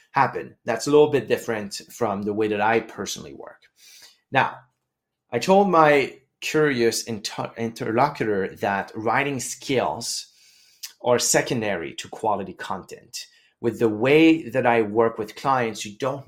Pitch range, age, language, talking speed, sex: 110-140 Hz, 30-49, English, 135 wpm, male